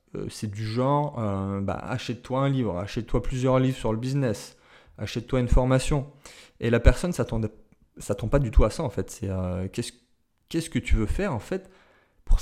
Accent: French